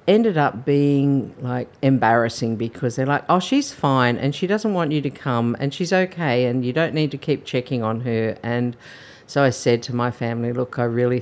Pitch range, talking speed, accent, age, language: 120-150 Hz, 215 wpm, Australian, 50-69, English